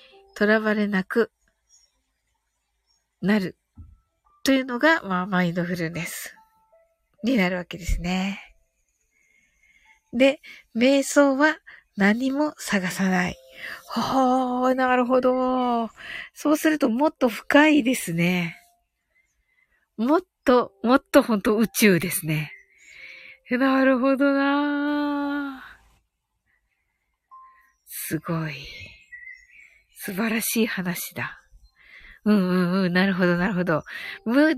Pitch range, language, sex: 195-295 Hz, Japanese, female